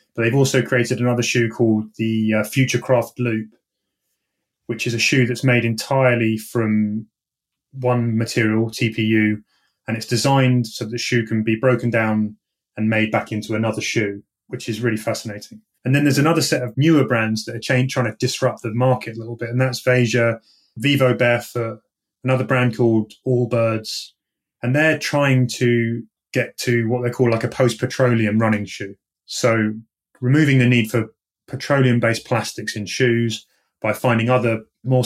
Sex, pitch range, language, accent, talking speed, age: male, 110-130 Hz, English, British, 170 wpm, 30-49